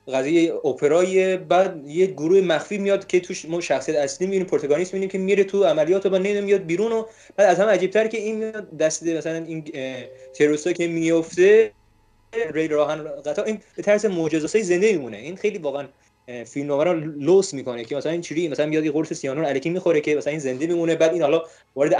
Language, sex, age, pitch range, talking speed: Persian, male, 20-39, 140-190 Hz, 195 wpm